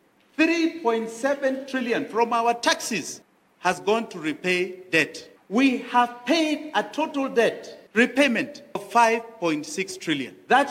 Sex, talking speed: male, 120 wpm